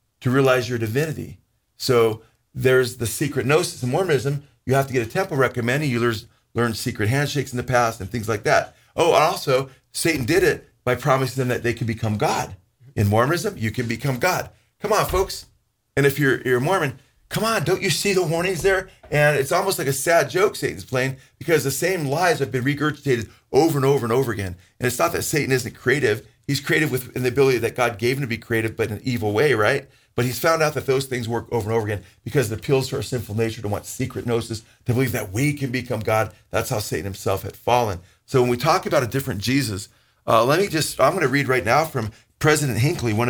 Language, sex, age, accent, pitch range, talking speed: English, male, 40-59, American, 115-140 Hz, 235 wpm